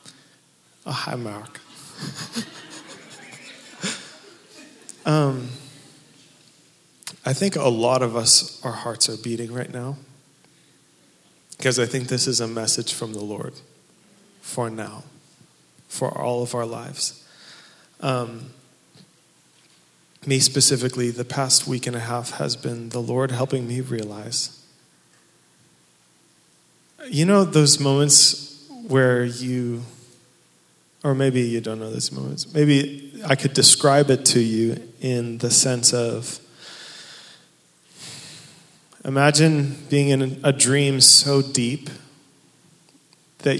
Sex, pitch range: male, 120-140 Hz